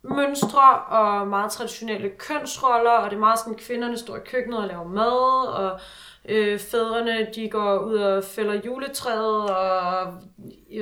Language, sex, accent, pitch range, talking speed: Danish, female, native, 200-255 Hz, 160 wpm